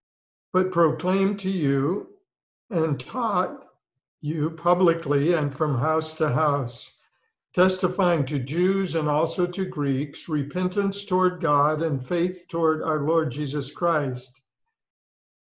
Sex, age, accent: male, 60-79, American